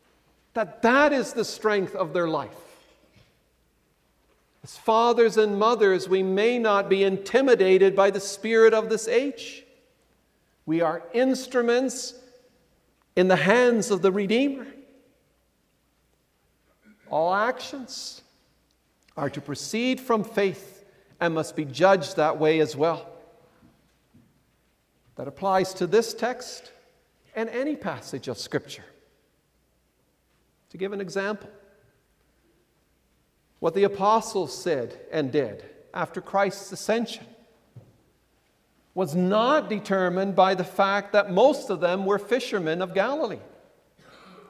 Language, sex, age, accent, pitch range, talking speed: English, male, 50-69, American, 190-235 Hz, 115 wpm